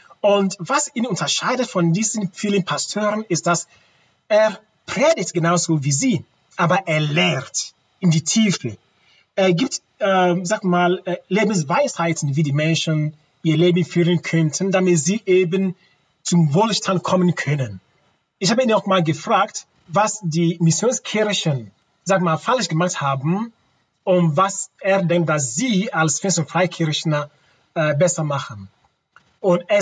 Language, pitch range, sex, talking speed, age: German, 160-205 Hz, male, 140 wpm, 30-49